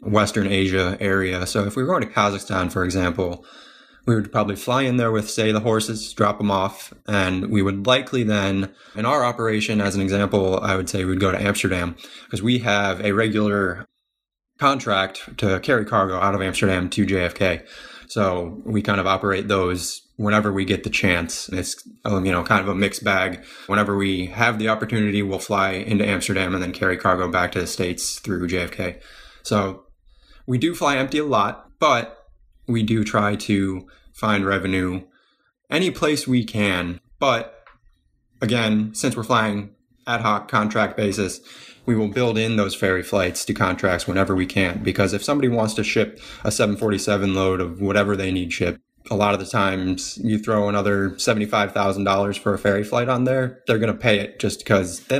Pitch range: 95-110 Hz